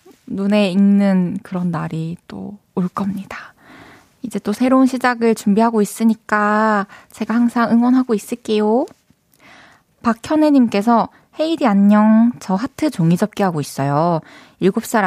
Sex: female